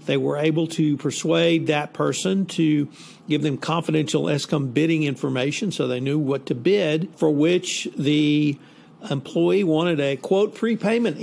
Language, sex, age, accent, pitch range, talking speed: English, male, 50-69, American, 145-175 Hz, 150 wpm